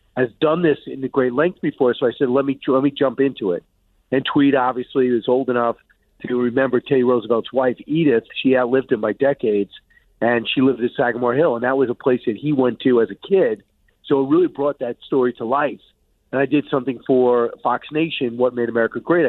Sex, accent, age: male, American, 50-69